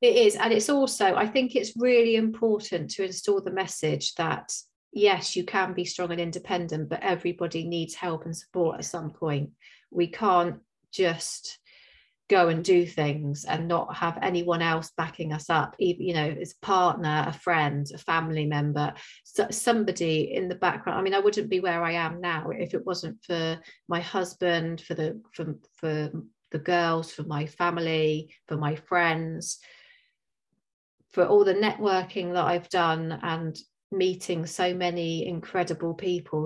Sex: female